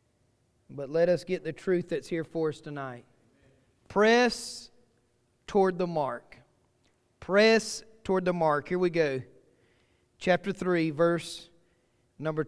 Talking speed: 125 wpm